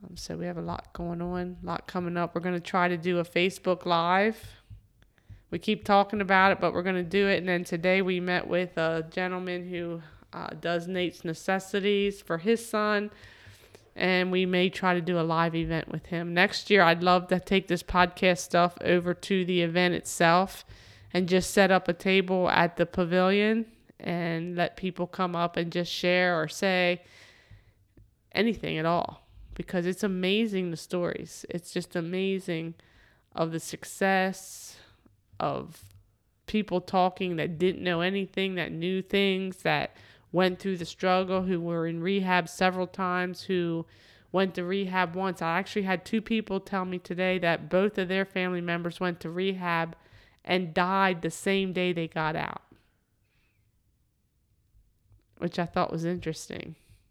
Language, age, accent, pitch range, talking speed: English, 20-39, American, 165-185 Hz, 170 wpm